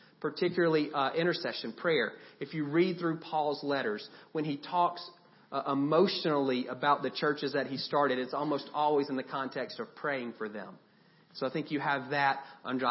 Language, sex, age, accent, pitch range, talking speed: English, male, 40-59, American, 130-165 Hz, 175 wpm